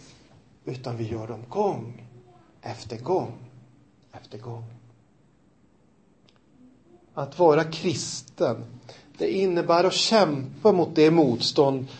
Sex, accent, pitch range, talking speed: male, native, 120-165 Hz, 95 wpm